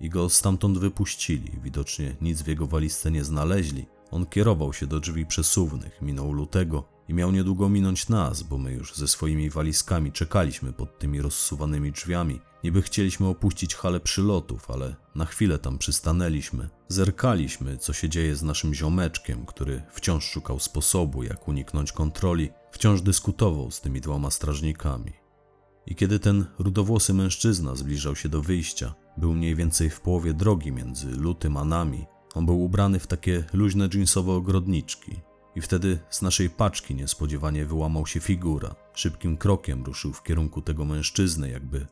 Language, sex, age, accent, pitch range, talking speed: Polish, male, 40-59, native, 75-95 Hz, 155 wpm